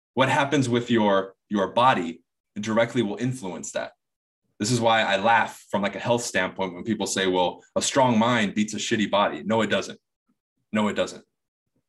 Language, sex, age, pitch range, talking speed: English, male, 20-39, 95-130 Hz, 185 wpm